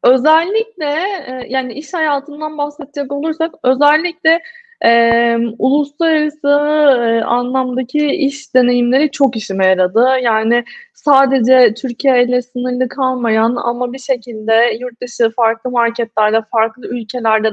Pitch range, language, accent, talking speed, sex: 230-270 Hz, Turkish, native, 105 wpm, female